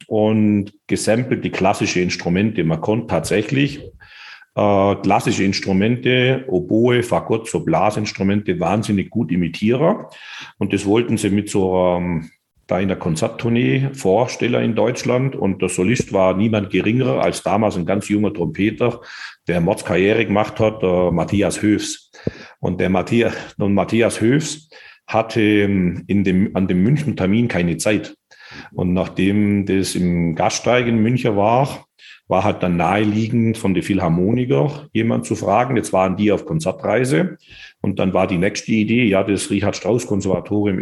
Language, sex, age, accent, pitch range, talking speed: German, male, 40-59, German, 95-115 Hz, 145 wpm